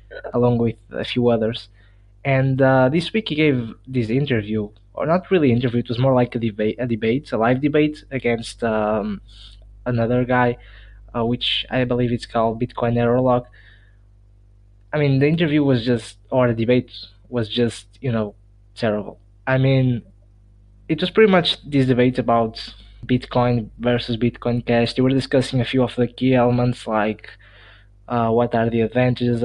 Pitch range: 105-130 Hz